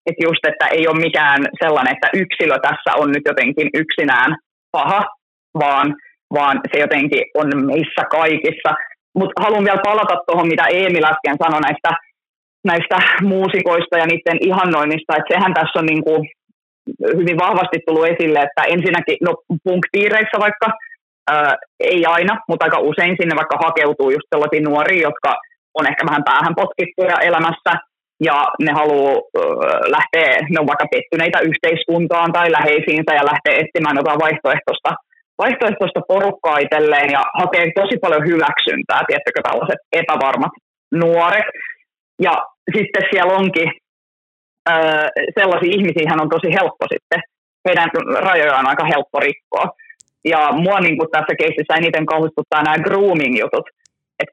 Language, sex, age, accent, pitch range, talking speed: Finnish, female, 20-39, native, 160-195 Hz, 135 wpm